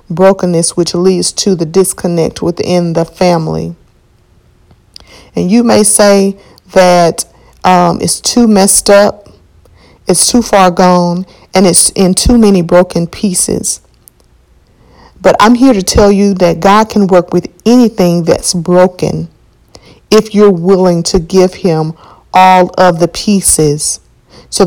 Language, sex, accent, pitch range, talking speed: English, female, American, 170-205 Hz, 135 wpm